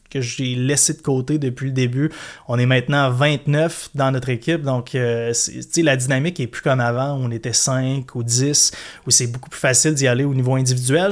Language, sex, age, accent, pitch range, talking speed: French, male, 20-39, Canadian, 130-155 Hz, 215 wpm